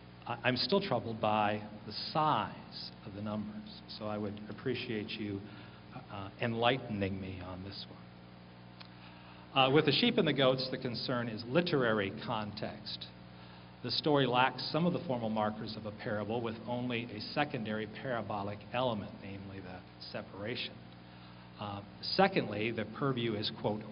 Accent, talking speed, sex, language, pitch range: American, 145 wpm, male, English, 100-125 Hz